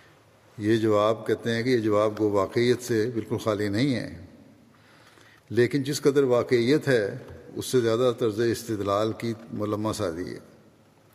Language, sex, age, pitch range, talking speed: Urdu, male, 50-69, 110-125 Hz, 150 wpm